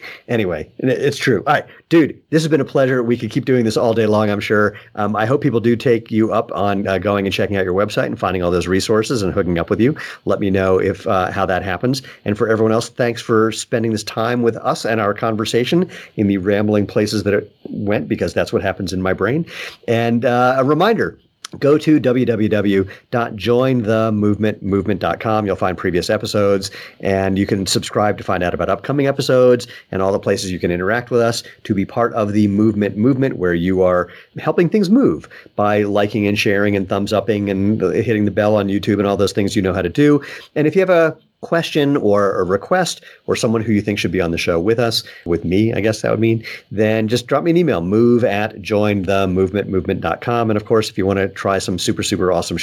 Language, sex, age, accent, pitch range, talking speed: English, male, 50-69, American, 100-120 Hz, 225 wpm